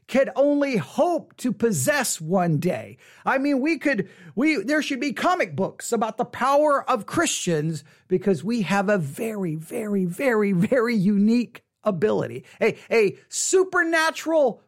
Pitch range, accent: 185-275 Hz, American